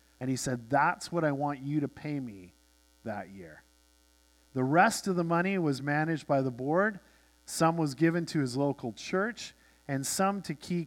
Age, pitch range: 50-69, 105-170 Hz